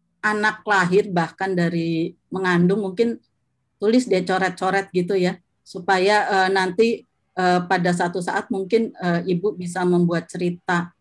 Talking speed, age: 130 wpm, 30-49